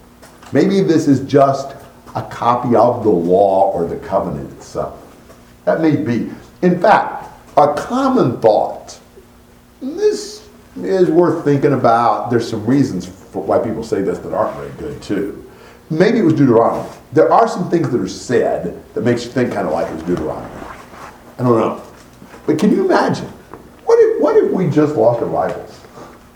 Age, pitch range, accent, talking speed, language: 50-69, 95-160 Hz, American, 170 wpm, English